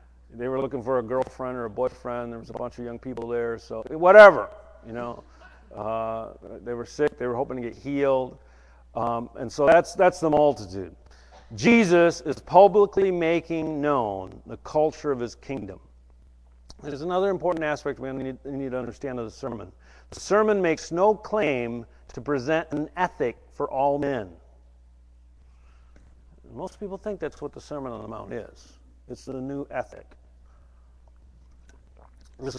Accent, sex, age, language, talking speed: American, male, 50-69, English, 165 wpm